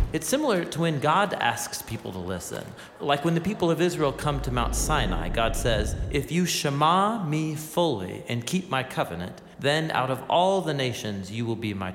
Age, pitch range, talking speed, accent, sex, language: 40-59, 115-165 Hz, 200 wpm, American, male, English